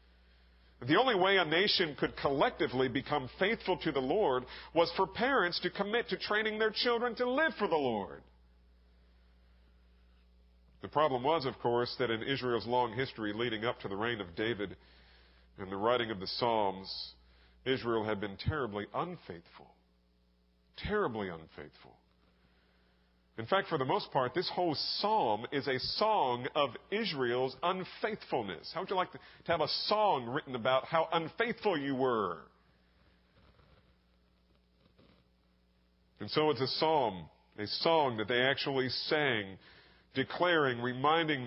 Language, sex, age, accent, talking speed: English, male, 40-59, American, 140 wpm